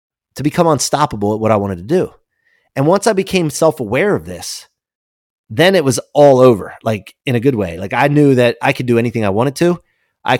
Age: 30-49